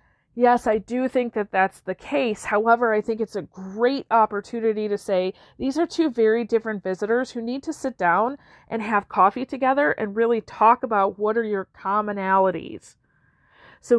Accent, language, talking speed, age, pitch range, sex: American, English, 175 wpm, 40-59, 190-245 Hz, female